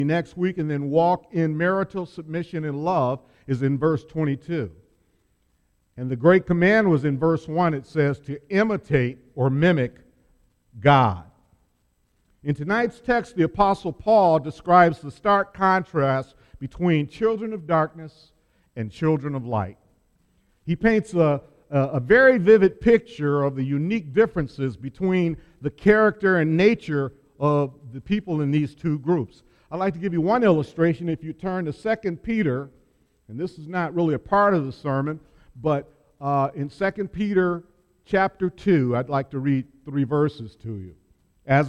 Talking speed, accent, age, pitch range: 160 wpm, American, 50-69, 135-180 Hz